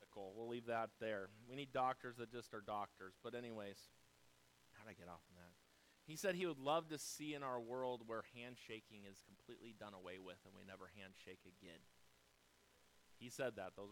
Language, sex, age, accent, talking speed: English, male, 30-49, American, 200 wpm